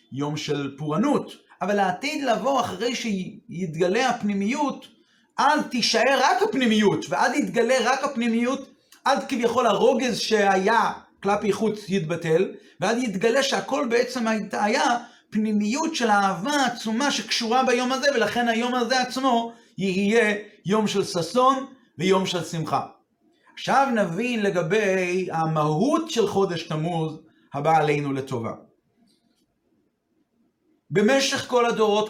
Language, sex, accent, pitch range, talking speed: Hebrew, male, native, 190-240 Hz, 110 wpm